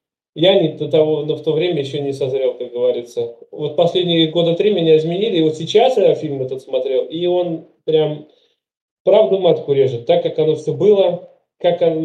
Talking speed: 190 wpm